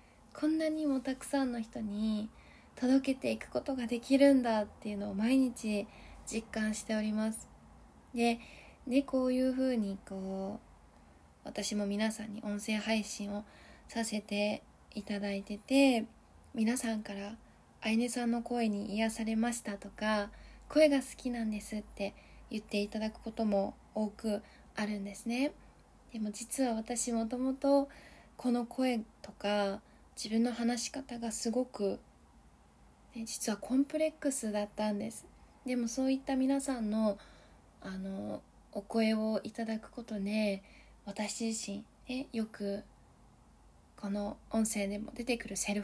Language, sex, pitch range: Japanese, female, 205-245 Hz